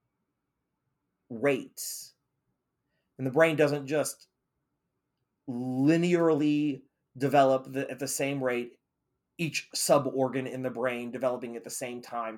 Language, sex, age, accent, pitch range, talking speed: English, male, 30-49, American, 140-195 Hz, 105 wpm